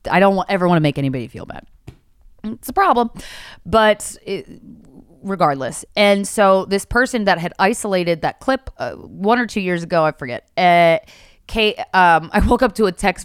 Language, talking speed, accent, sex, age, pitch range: English, 185 wpm, American, female, 20-39, 150-220 Hz